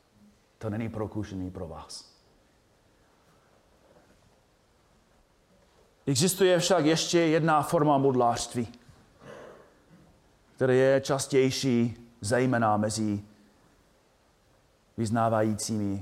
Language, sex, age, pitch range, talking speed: Czech, male, 30-49, 120-190 Hz, 65 wpm